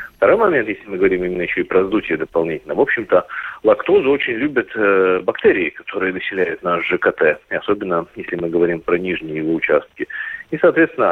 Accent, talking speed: native, 175 wpm